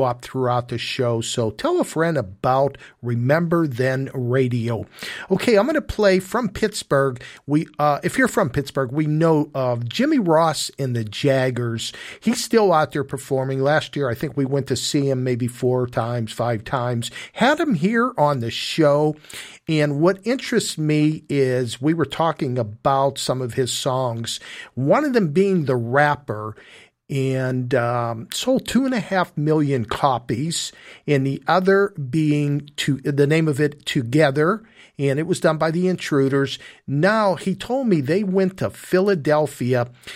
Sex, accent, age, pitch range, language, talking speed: male, American, 50-69, 130-165 Hz, English, 165 wpm